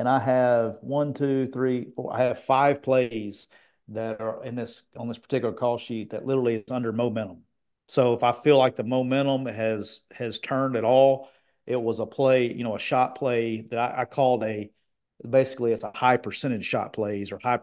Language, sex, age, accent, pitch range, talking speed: English, male, 40-59, American, 115-140 Hz, 205 wpm